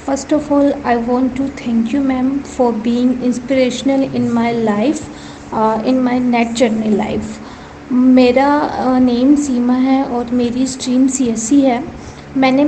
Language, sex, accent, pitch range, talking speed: Hindi, female, native, 245-275 Hz, 140 wpm